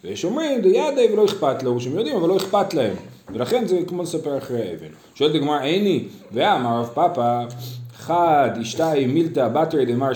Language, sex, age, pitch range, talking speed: Hebrew, male, 40-59, 115-180 Hz, 175 wpm